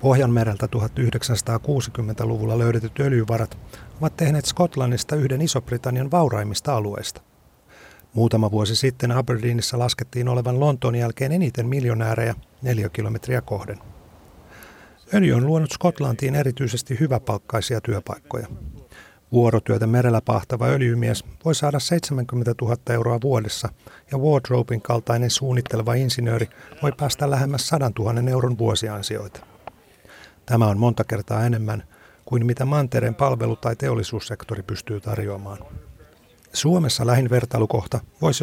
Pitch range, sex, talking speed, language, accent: 115-135 Hz, male, 110 wpm, Finnish, native